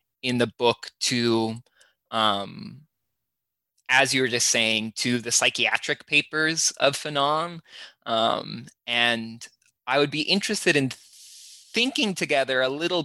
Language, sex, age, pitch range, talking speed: English, male, 20-39, 110-150 Hz, 125 wpm